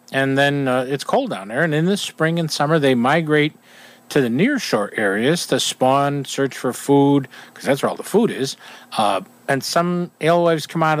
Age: 50-69